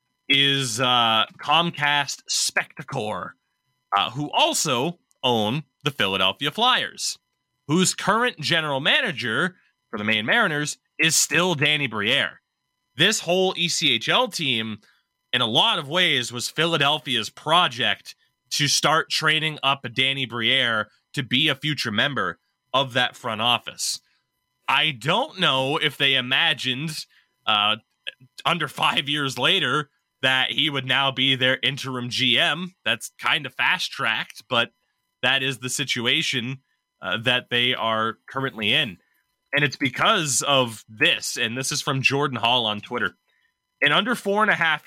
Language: English